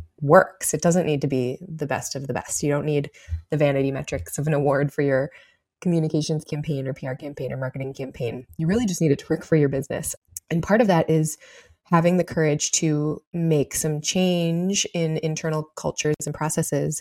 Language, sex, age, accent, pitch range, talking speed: English, female, 20-39, American, 145-170 Hz, 200 wpm